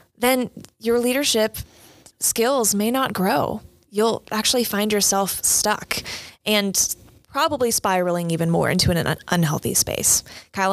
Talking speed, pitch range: 125 wpm, 185-225 Hz